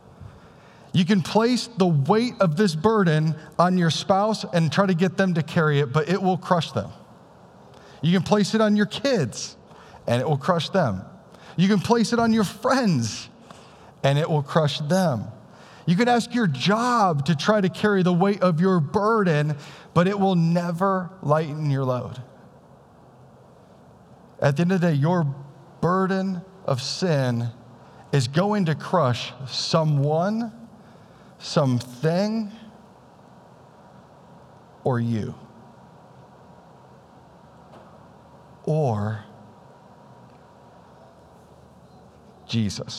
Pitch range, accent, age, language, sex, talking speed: 150-200 Hz, American, 40-59, English, male, 125 wpm